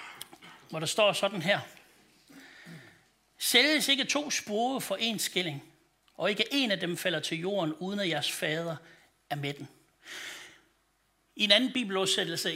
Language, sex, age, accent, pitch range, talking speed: Danish, male, 60-79, native, 160-220 Hz, 150 wpm